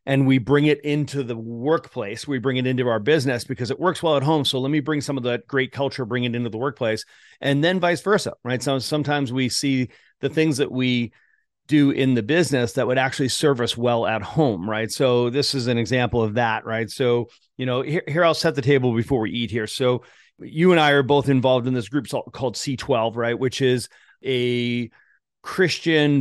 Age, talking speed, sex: 40-59, 220 wpm, male